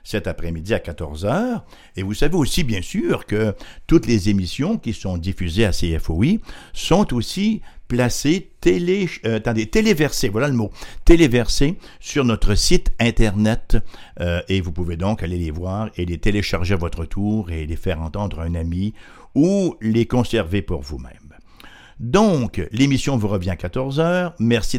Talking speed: 165 wpm